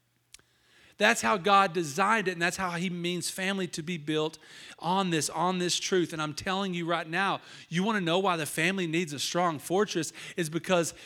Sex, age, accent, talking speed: male, 40-59, American, 205 wpm